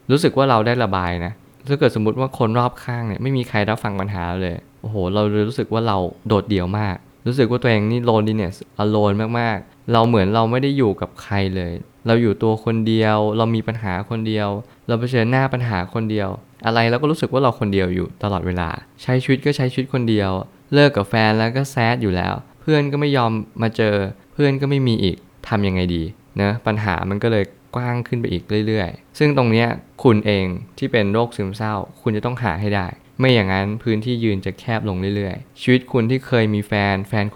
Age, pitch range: 20-39, 100-125 Hz